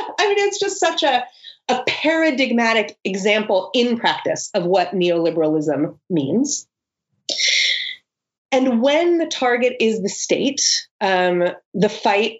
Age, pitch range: 30-49, 190-275 Hz